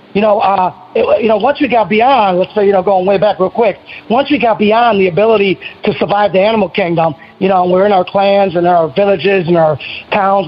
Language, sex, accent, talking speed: English, male, American, 245 wpm